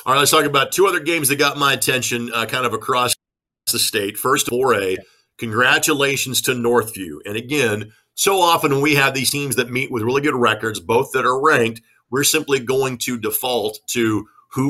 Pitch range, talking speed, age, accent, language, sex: 120-150 Hz, 195 wpm, 50-69, American, English, male